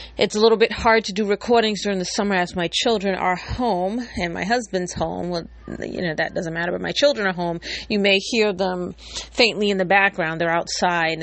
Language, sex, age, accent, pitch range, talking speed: English, female, 40-59, American, 150-205 Hz, 220 wpm